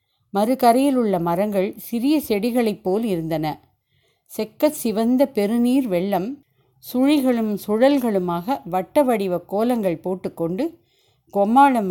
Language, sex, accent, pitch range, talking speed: Tamil, female, native, 175-240 Hz, 95 wpm